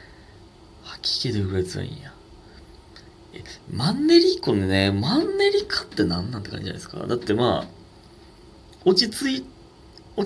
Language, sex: Japanese, male